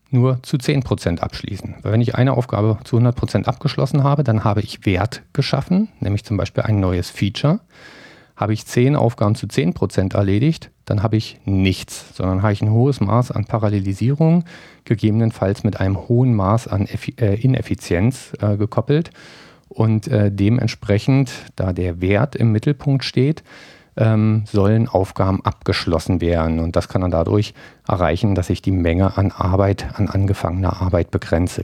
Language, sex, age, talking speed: German, male, 50-69, 155 wpm